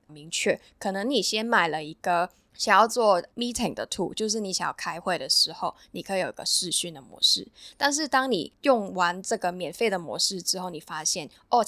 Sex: female